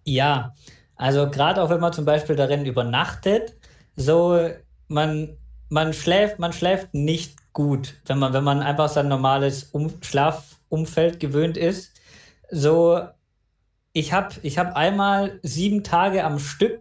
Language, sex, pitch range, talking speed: German, male, 140-170 Hz, 135 wpm